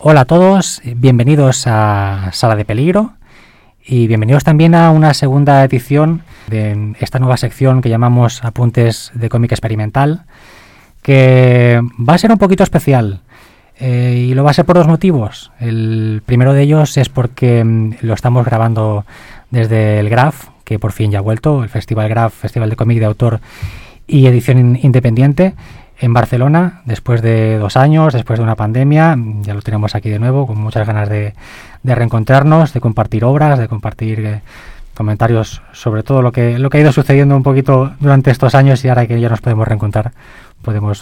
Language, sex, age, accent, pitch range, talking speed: Spanish, male, 20-39, Spanish, 110-140 Hz, 175 wpm